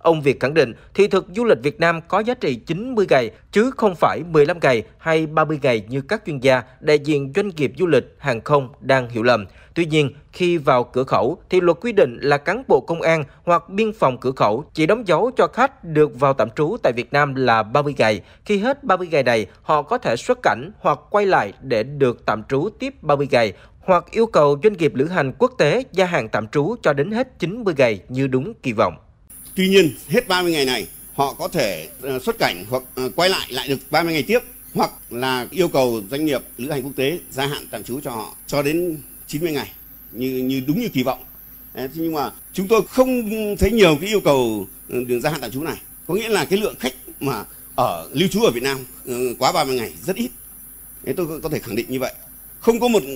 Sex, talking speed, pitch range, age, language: male, 235 wpm, 130-185 Hz, 20-39, Vietnamese